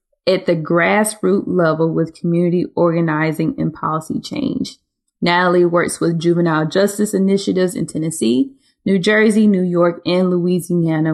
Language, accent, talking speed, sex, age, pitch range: English, American, 130 wpm, female, 20-39, 160-185 Hz